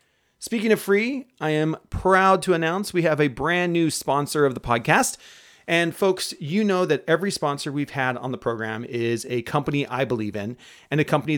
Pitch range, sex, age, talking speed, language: 125-165 Hz, male, 30-49, 200 wpm, English